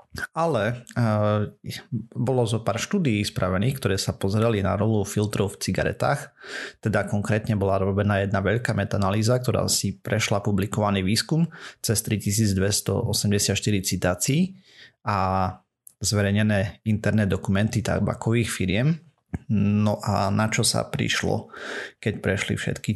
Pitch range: 100-115 Hz